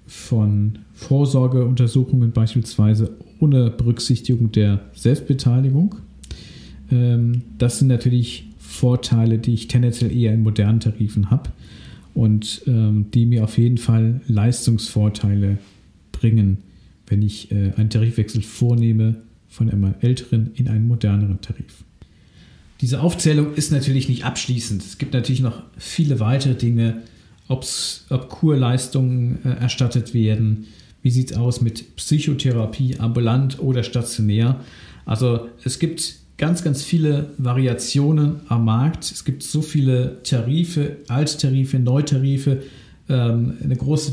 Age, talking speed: 50-69, 115 wpm